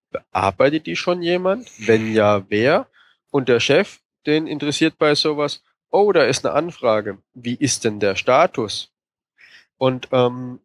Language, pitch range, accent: German, 120-155 Hz, German